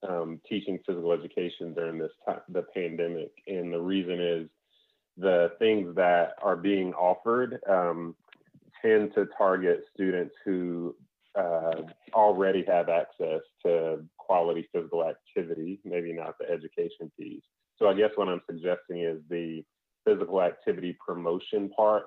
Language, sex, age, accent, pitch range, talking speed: English, male, 30-49, American, 85-115 Hz, 135 wpm